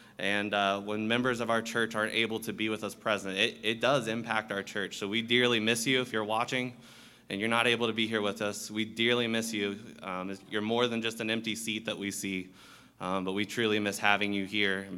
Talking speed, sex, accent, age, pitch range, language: 245 wpm, male, American, 20-39, 100-115 Hz, English